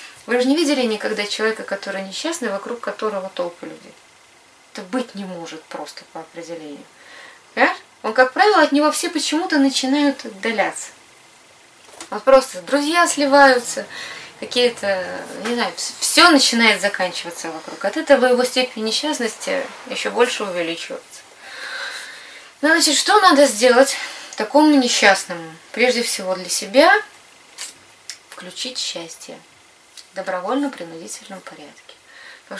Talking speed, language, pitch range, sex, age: 115 wpm, Russian, 195-280 Hz, female, 20-39